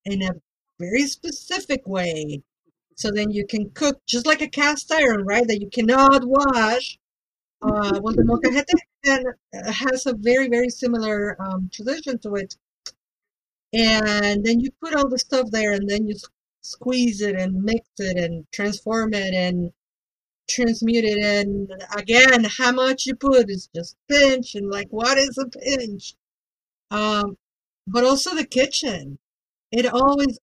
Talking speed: 155 wpm